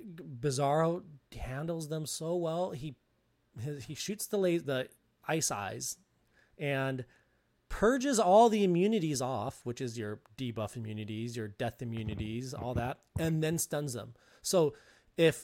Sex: male